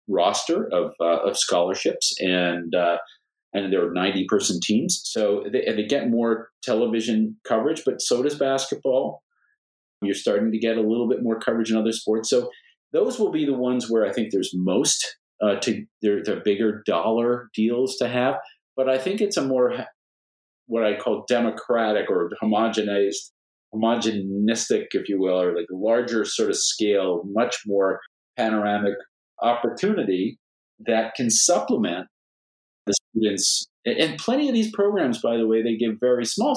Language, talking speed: English, 160 wpm